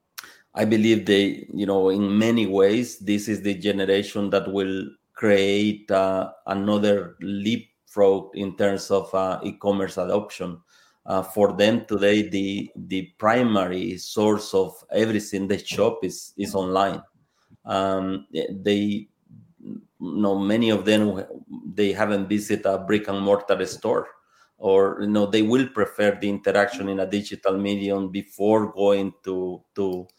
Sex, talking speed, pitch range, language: male, 140 wpm, 95-105 Hz, English